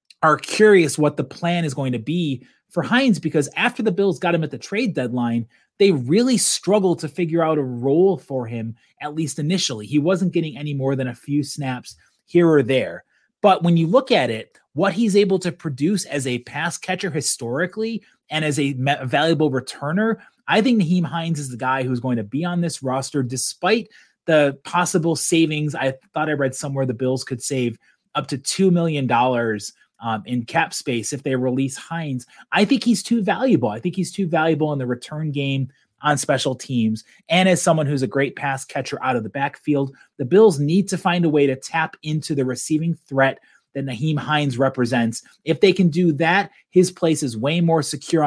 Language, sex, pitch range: English, male, 135-180 Hz